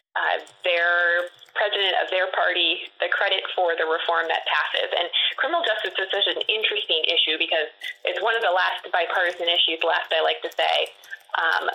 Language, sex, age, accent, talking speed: English, female, 20-39, American, 180 wpm